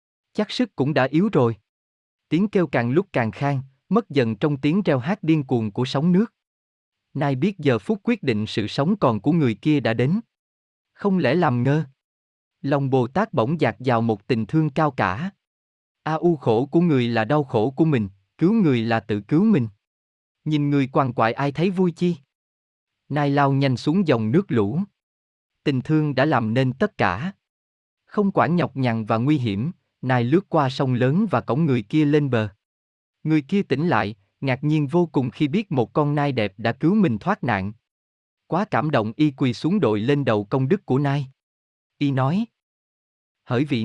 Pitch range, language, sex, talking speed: 115-155 Hz, Vietnamese, male, 195 wpm